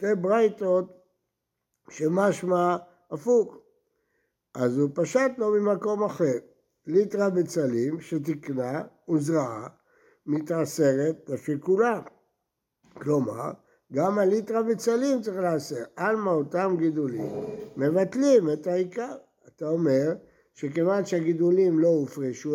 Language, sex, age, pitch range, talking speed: Hebrew, male, 60-79, 155-220 Hz, 90 wpm